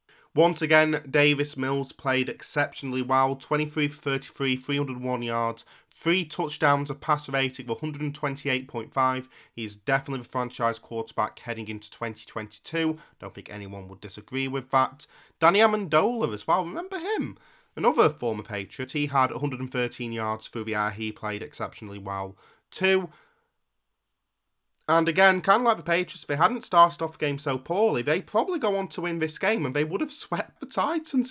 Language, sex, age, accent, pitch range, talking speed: English, male, 30-49, British, 120-155 Hz, 165 wpm